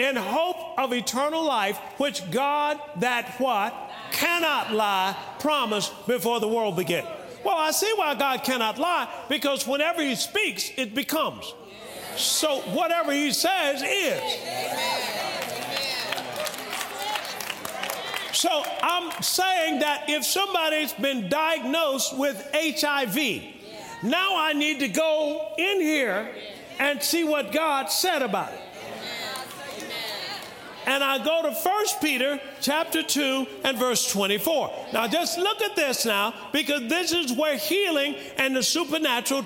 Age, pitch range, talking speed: 40-59, 255-315 Hz, 125 wpm